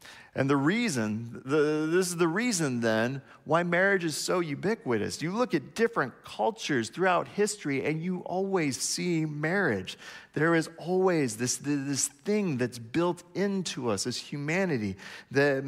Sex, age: male, 40-59